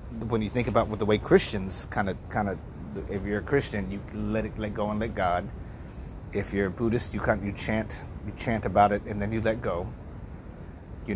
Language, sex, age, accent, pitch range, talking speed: English, male, 30-49, American, 95-110 Hz, 225 wpm